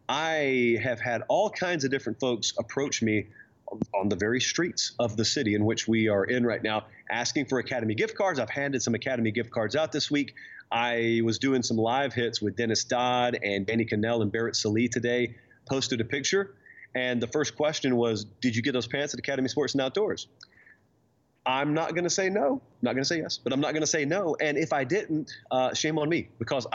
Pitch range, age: 115-145 Hz, 30-49